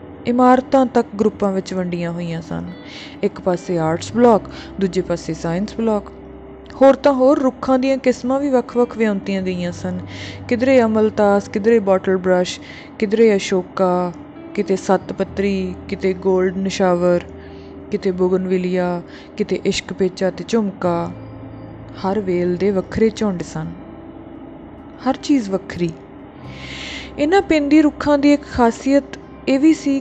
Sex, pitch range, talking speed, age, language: female, 185-245 Hz, 120 wpm, 20-39, Punjabi